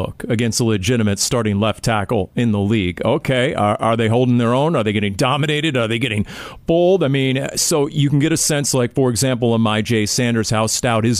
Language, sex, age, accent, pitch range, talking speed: English, male, 40-59, American, 115-135 Hz, 225 wpm